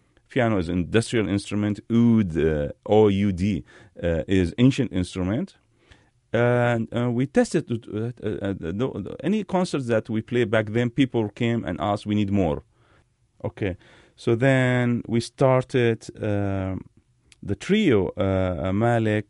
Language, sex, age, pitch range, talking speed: English, male, 40-59, 90-115 Hz, 135 wpm